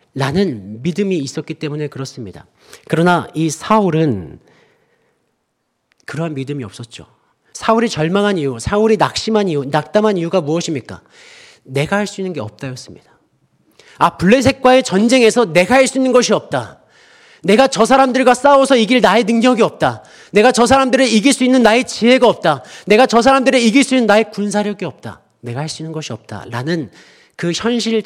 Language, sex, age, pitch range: Korean, male, 40-59, 135-215 Hz